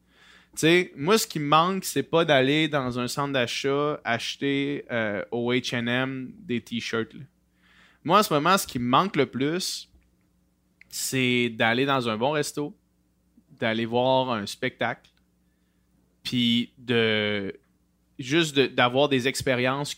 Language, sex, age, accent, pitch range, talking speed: French, male, 20-39, Canadian, 120-150 Hz, 140 wpm